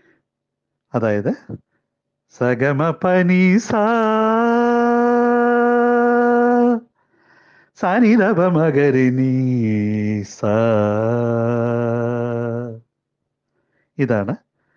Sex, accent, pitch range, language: male, native, 115-170 Hz, Malayalam